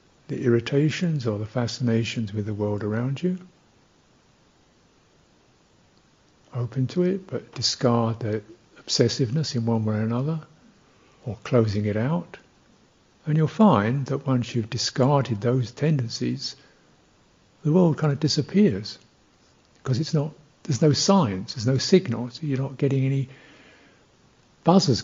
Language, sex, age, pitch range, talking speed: English, male, 60-79, 115-145 Hz, 130 wpm